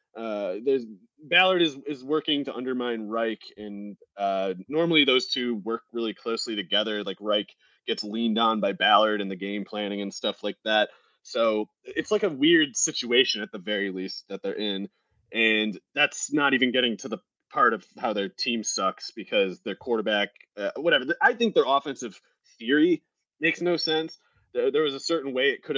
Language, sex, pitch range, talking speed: English, male, 110-175 Hz, 185 wpm